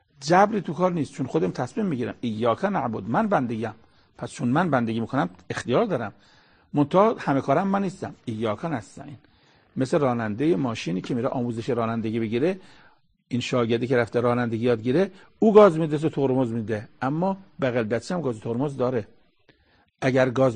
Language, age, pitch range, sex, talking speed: Persian, 50-69, 120-165 Hz, male, 160 wpm